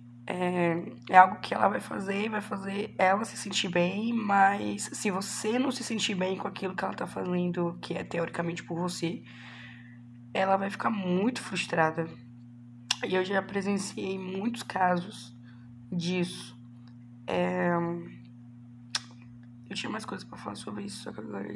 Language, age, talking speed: Portuguese, 20-39, 155 wpm